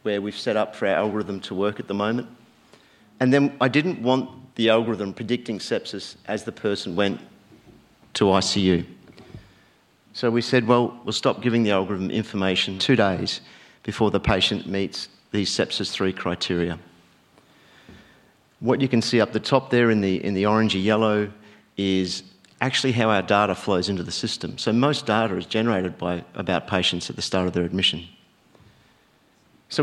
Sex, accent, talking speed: male, Australian, 170 wpm